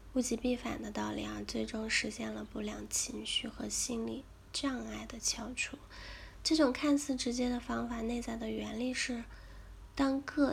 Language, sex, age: Chinese, female, 10-29